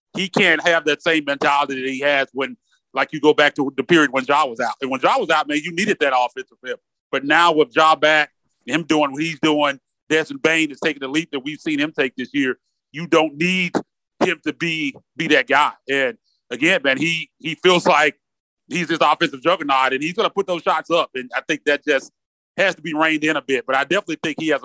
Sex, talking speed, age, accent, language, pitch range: male, 245 wpm, 30-49, American, English, 135-165 Hz